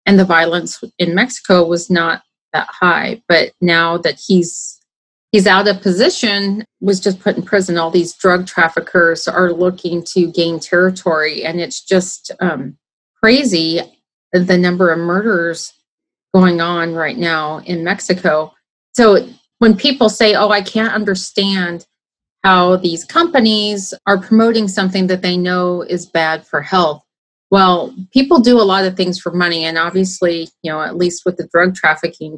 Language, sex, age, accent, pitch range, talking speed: English, female, 30-49, American, 170-195 Hz, 160 wpm